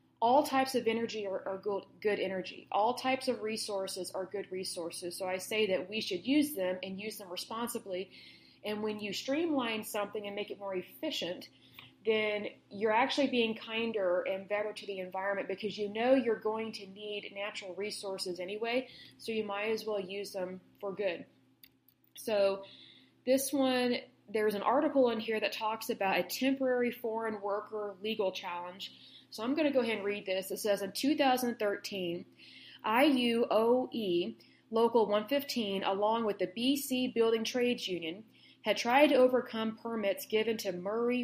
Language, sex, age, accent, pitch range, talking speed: Hindi, female, 20-39, American, 195-235 Hz, 165 wpm